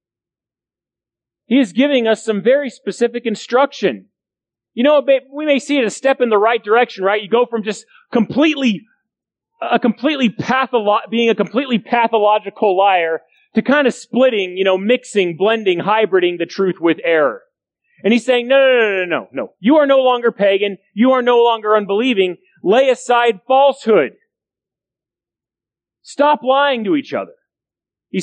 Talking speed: 165 wpm